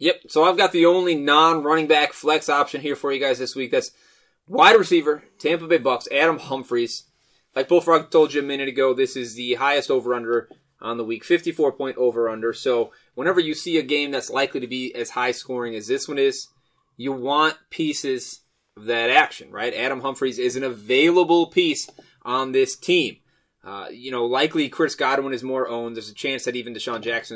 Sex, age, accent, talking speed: male, 20-39, American, 195 wpm